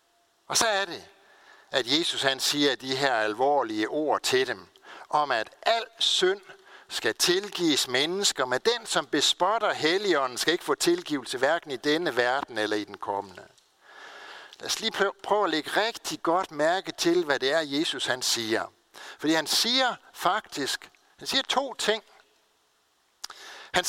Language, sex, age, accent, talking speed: Danish, male, 60-79, native, 160 wpm